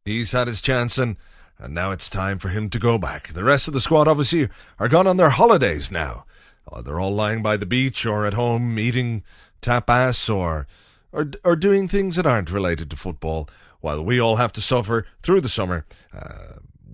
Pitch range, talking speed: 90-140 Hz, 200 wpm